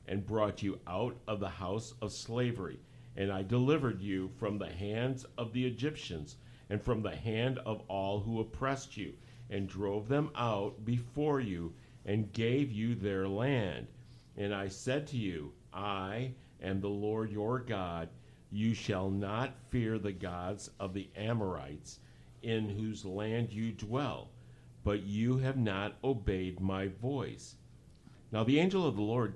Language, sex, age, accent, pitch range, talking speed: English, male, 50-69, American, 100-125 Hz, 155 wpm